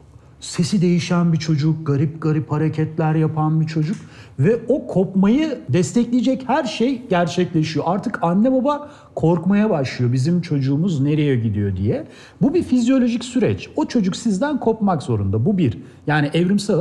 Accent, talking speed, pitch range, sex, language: native, 145 wpm, 130-200 Hz, male, Turkish